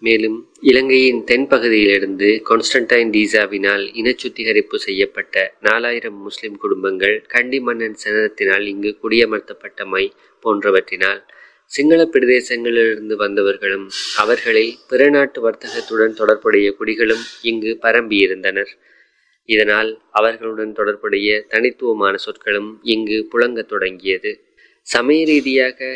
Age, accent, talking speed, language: 20-39, native, 90 wpm, Tamil